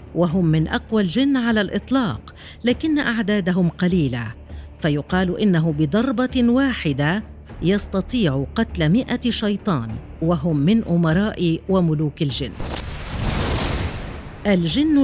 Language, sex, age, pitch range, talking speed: Arabic, female, 50-69, 150-215 Hz, 90 wpm